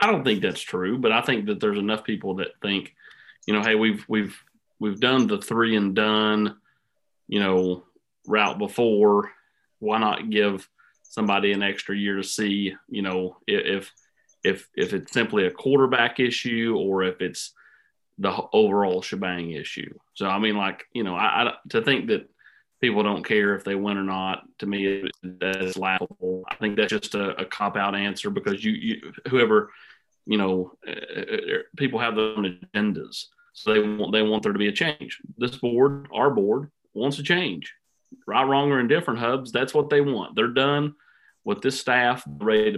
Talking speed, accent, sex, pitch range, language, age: 180 wpm, American, male, 100-125 Hz, English, 30-49